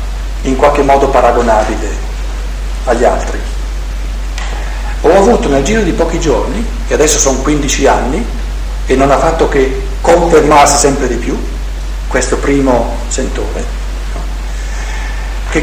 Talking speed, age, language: 125 wpm, 50-69, Italian